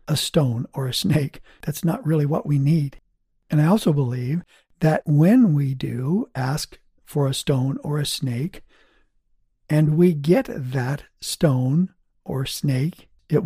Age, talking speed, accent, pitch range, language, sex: 60-79, 150 wpm, American, 135-155 Hz, English, male